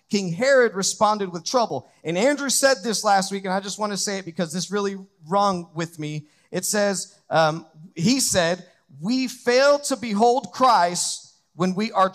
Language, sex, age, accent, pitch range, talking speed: English, male, 40-59, American, 170-230 Hz, 185 wpm